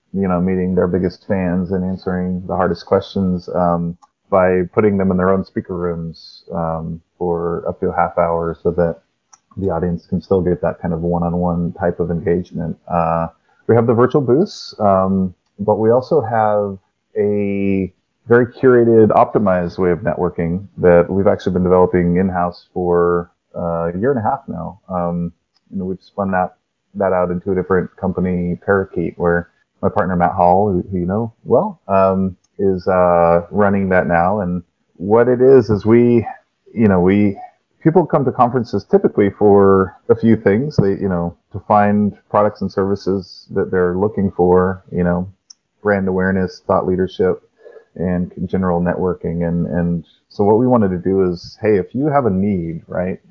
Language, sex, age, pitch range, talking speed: English, male, 30-49, 85-100 Hz, 175 wpm